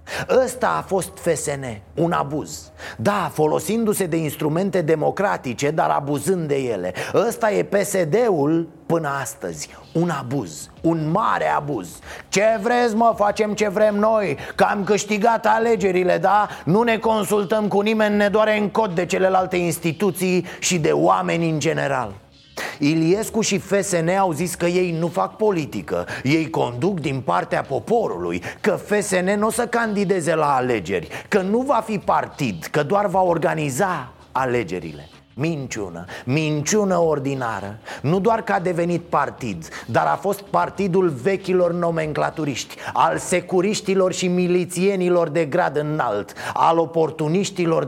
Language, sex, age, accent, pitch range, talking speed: Romanian, male, 30-49, native, 150-200 Hz, 140 wpm